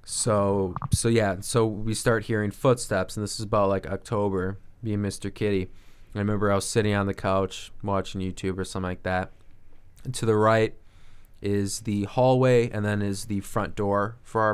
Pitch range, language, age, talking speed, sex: 95-110 Hz, English, 20-39, 200 wpm, male